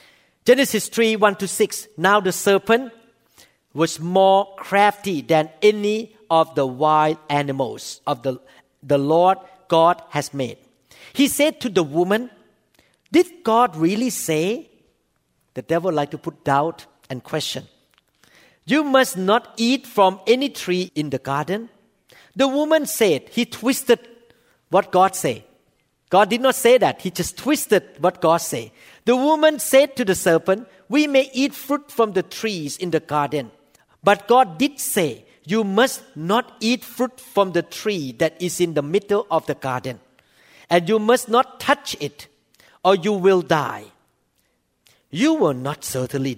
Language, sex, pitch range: English, male, 160-245 Hz